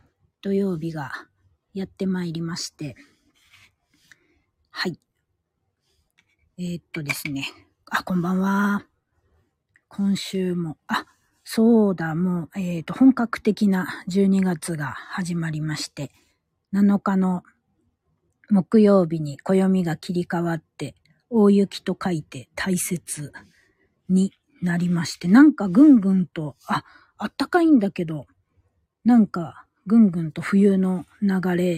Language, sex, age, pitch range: Japanese, female, 40-59, 145-190 Hz